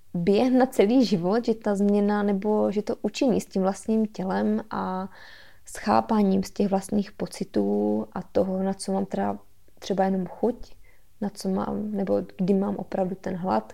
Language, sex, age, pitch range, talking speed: Czech, female, 20-39, 180-205 Hz, 165 wpm